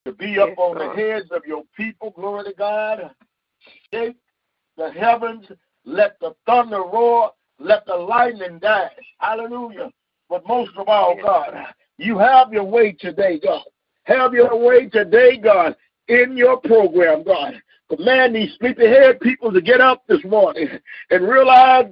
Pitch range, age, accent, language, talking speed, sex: 210-265 Hz, 50-69, American, English, 155 wpm, male